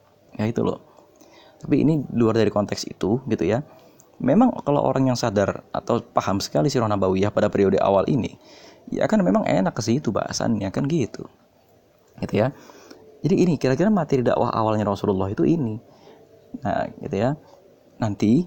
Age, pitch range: 20-39, 100-145 Hz